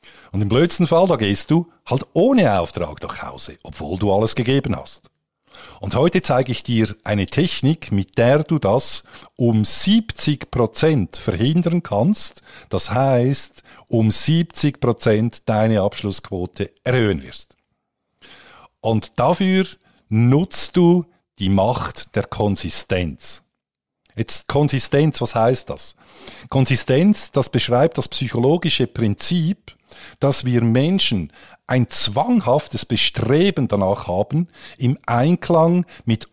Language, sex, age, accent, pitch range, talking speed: German, male, 50-69, Austrian, 110-150 Hz, 115 wpm